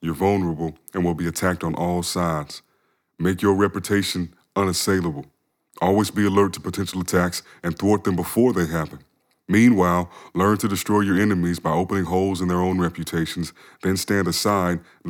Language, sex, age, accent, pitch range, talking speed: English, male, 30-49, American, 90-115 Hz, 165 wpm